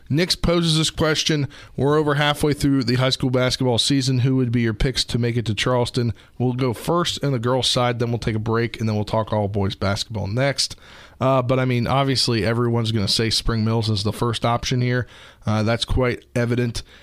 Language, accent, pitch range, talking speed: English, American, 105-130 Hz, 220 wpm